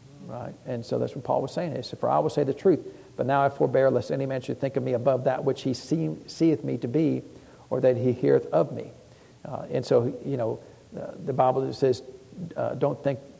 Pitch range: 135-155 Hz